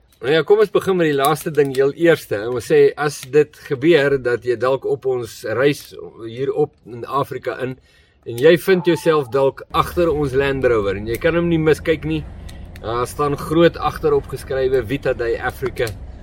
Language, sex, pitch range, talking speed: English, male, 110-160 Hz, 190 wpm